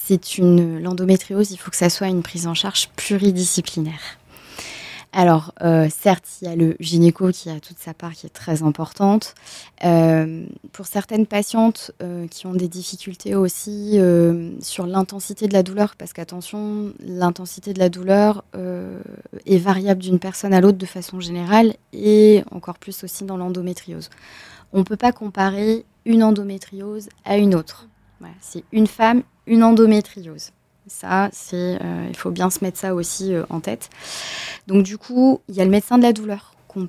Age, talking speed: 20-39, 175 wpm